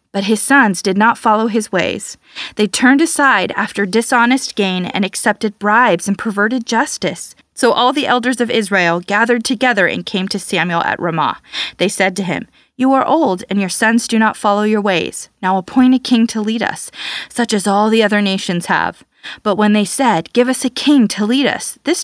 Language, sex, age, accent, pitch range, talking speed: English, female, 20-39, American, 200-245 Hz, 205 wpm